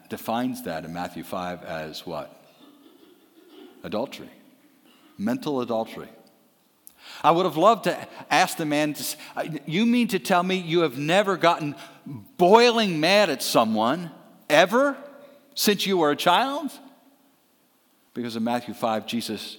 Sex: male